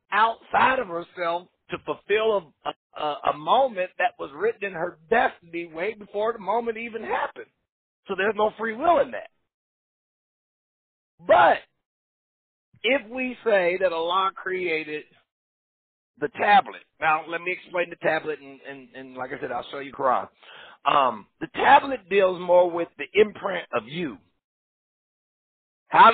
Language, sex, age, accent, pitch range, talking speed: English, male, 50-69, American, 165-215 Hz, 145 wpm